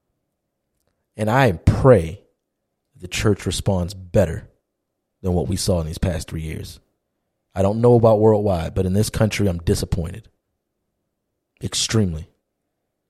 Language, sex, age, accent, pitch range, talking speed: English, male, 30-49, American, 90-110 Hz, 130 wpm